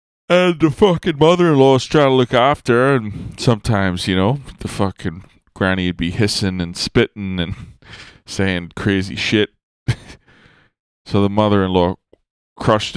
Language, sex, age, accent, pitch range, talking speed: English, male, 20-39, American, 90-115 Hz, 140 wpm